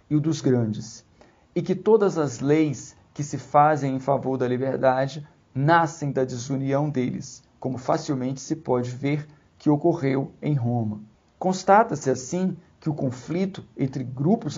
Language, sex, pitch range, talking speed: Portuguese, male, 130-170 Hz, 150 wpm